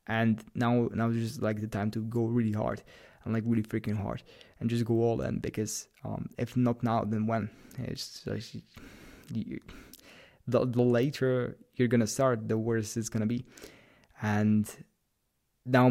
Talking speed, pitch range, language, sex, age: 180 wpm, 115-130 Hz, English, male, 20-39